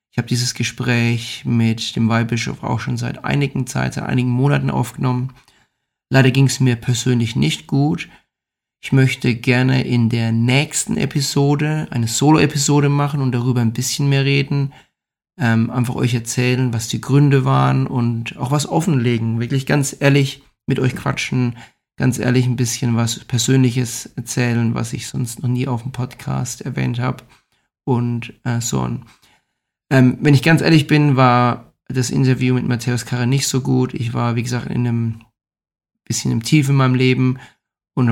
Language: German